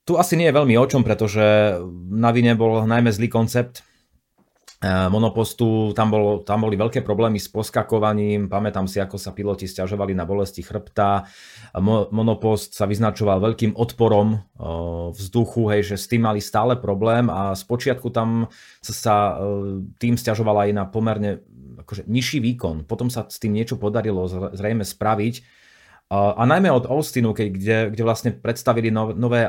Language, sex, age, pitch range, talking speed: Slovak, male, 30-49, 100-115 Hz, 155 wpm